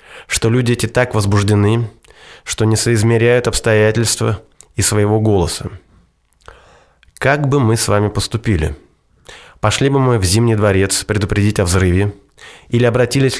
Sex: male